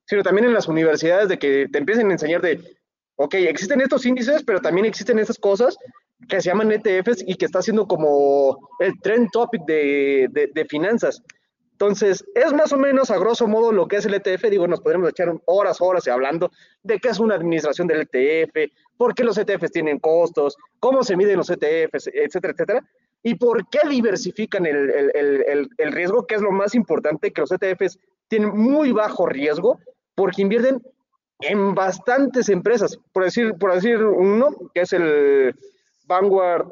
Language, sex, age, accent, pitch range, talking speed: Spanish, male, 30-49, Mexican, 180-265 Hz, 190 wpm